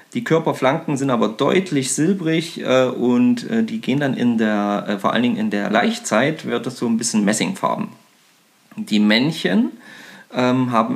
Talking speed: 150 wpm